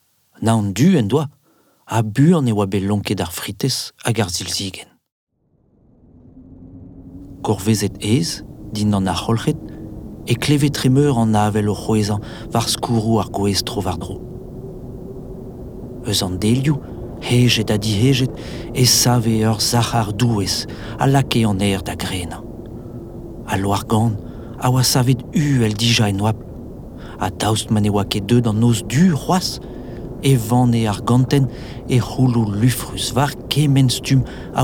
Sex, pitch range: male, 105-125 Hz